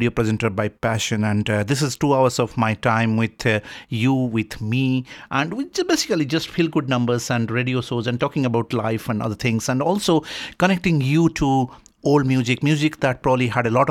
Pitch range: 110-130 Hz